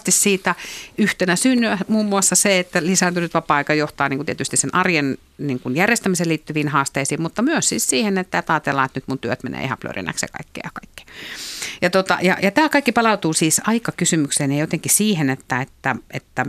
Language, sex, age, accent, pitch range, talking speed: Finnish, female, 50-69, native, 135-185 Hz, 185 wpm